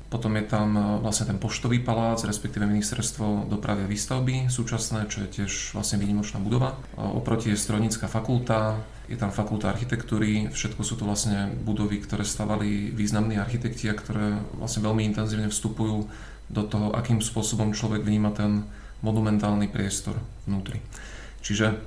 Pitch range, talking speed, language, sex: 105-115 Hz, 145 wpm, Slovak, male